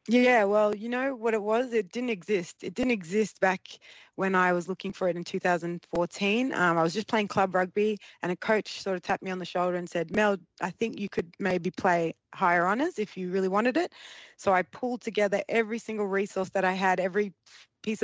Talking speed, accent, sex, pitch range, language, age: 225 wpm, Australian, female, 170-205 Hz, English, 20-39